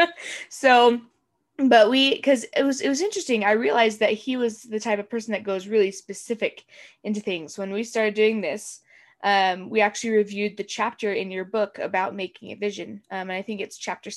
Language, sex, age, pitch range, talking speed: English, female, 20-39, 185-215 Hz, 205 wpm